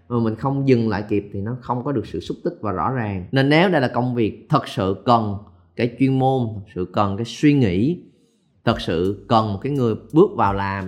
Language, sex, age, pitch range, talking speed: Vietnamese, male, 20-39, 105-140 Hz, 235 wpm